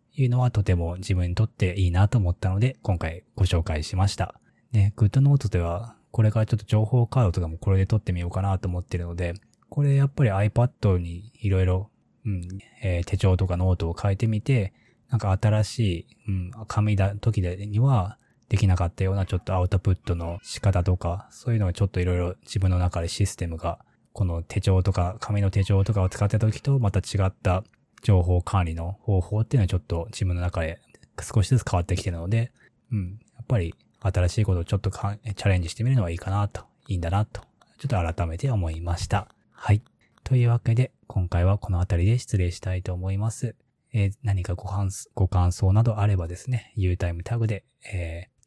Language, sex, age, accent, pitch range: Japanese, male, 20-39, native, 90-110 Hz